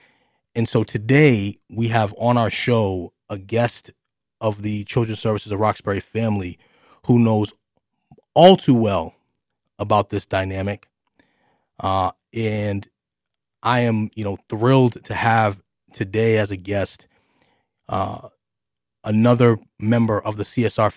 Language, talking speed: English, 125 wpm